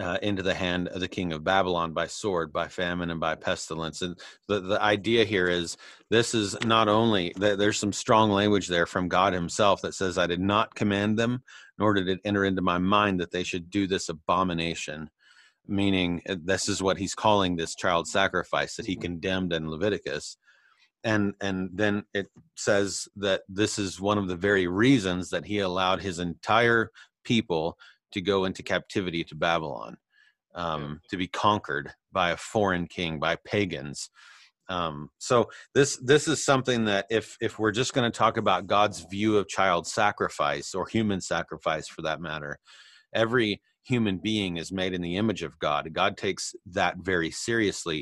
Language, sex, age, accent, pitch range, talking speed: English, male, 30-49, American, 90-105 Hz, 180 wpm